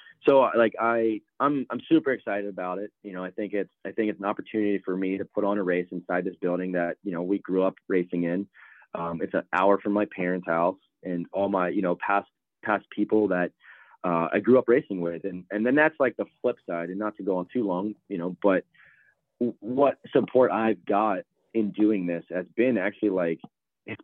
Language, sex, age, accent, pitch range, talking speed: English, male, 20-39, American, 90-110 Hz, 225 wpm